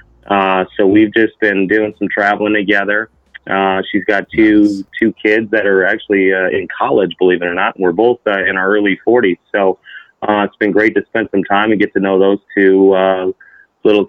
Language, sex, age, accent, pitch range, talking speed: English, male, 30-49, American, 95-110 Hz, 210 wpm